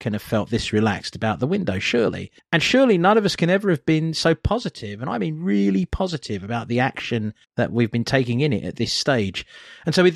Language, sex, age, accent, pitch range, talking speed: English, male, 40-59, British, 100-135 Hz, 235 wpm